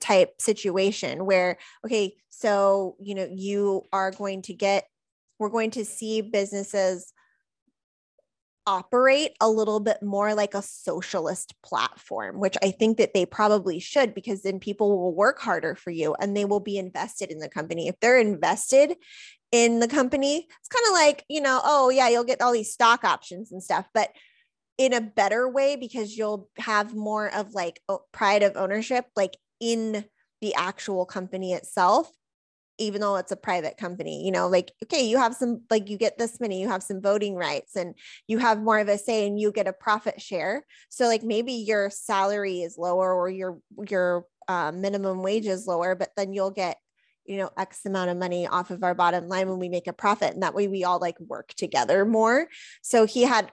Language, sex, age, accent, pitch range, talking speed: English, female, 20-39, American, 190-225 Hz, 195 wpm